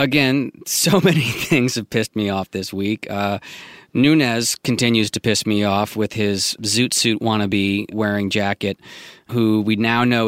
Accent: American